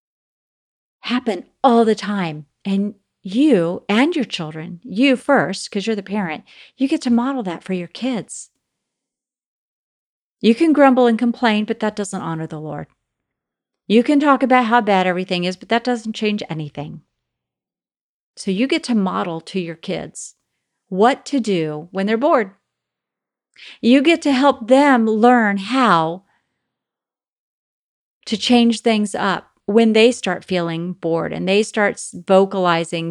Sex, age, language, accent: female, 50-69, English, American